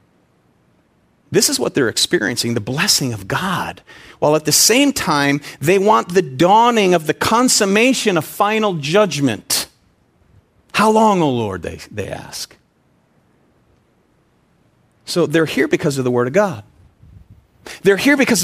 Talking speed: 140 wpm